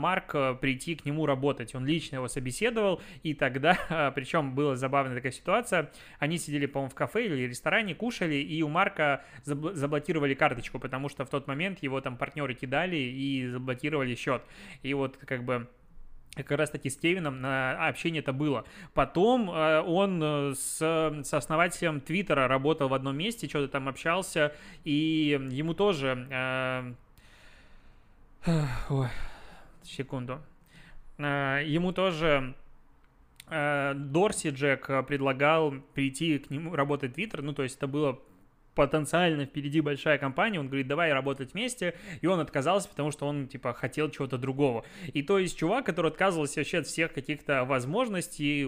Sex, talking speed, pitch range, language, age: male, 145 wpm, 135-165 Hz, Russian, 20-39